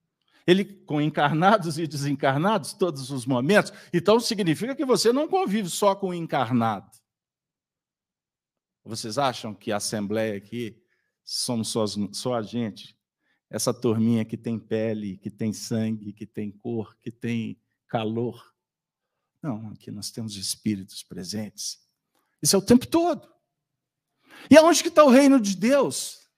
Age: 50-69